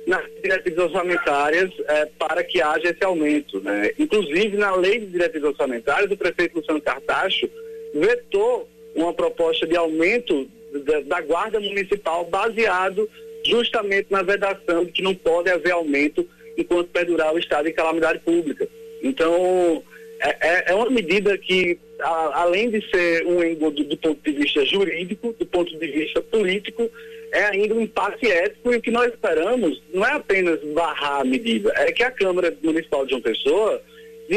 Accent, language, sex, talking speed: Brazilian, Portuguese, male, 160 wpm